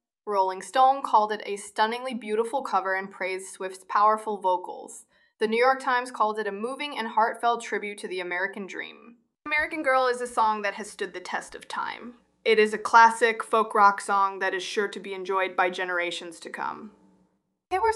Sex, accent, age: female, American, 20-39